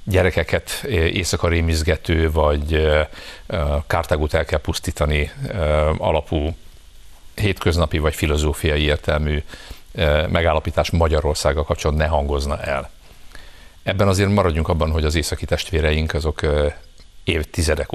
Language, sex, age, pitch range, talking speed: Hungarian, male, 50-69, 75-85 Hz, 95 wpm